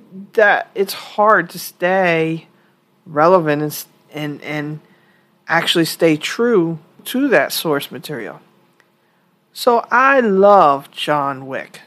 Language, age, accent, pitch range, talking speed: English, 40-59, American, 150-195 Hz, 105 wpm